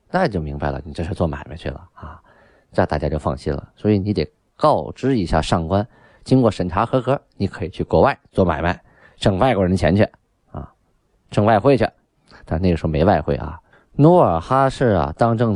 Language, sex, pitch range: Chinese, male, 85-120 Hz